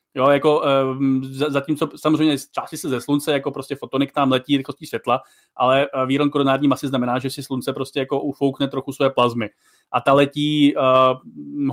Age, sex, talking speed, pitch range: 30-49, male, 185 wpm, 130-145 Hz